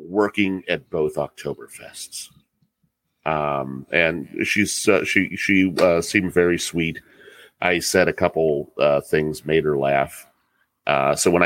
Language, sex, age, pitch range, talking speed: English, male, 40-59, 80-120 Hz, 140 wpm